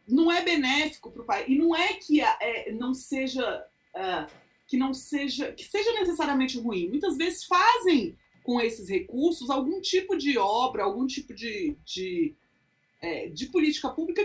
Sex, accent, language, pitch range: female, Brazilian, Portuguese, 245-365 Hz